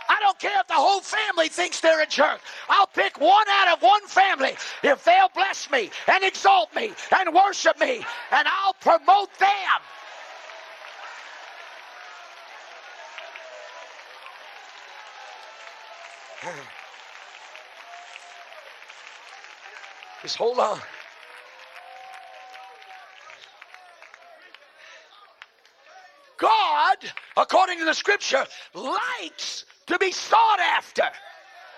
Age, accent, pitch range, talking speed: 40-59, American, 300-385 Hz, 85 wpm